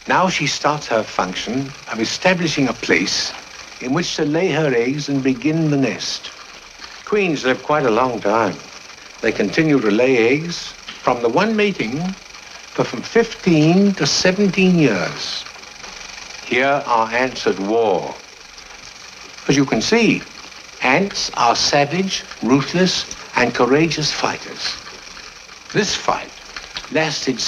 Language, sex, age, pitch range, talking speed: English, male, 60-79, 145-205 Hz, 130 wpm